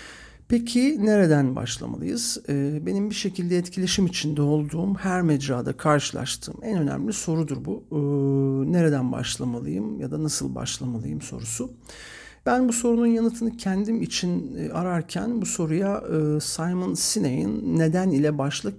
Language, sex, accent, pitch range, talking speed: Turkish, male, native, 140-195 Hz, 120 wpm